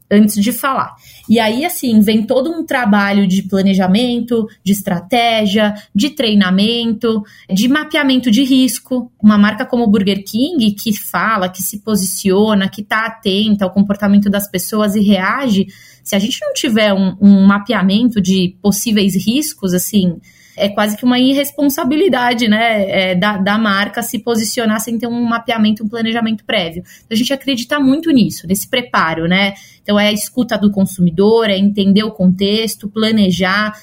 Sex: female